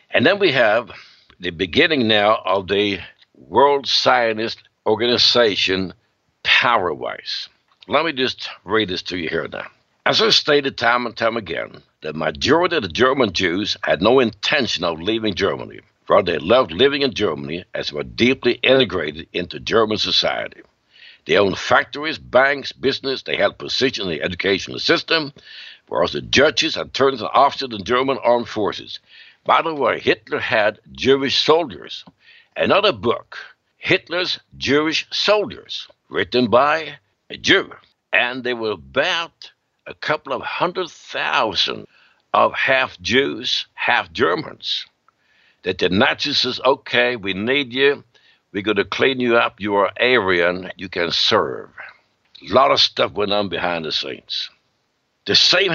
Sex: male